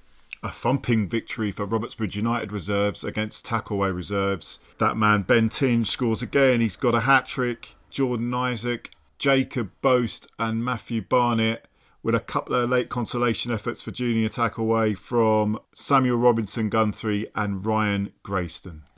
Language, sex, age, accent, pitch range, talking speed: English, male, 40-59, British, 105-125 Hz, 140 wpm